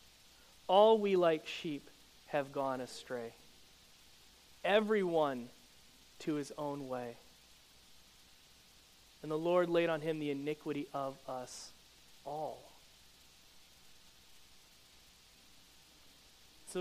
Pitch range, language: 125-210 Hz, English